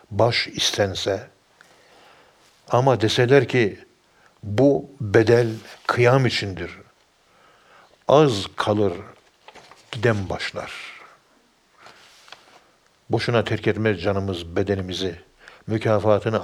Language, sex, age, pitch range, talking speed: Turkish, male, 60-79, 100-115 Hz, 70 wpm